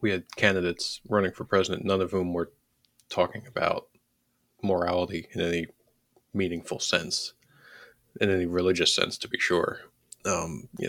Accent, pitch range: American, 90-105 Hz